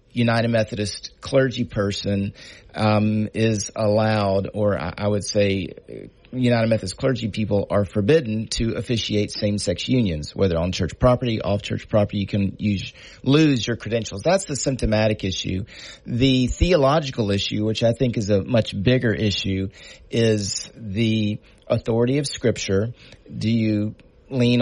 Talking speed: 140 wpm